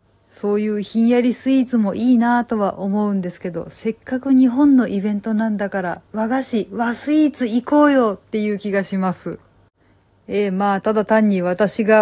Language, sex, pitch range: Japanese, female, 170-220 Hz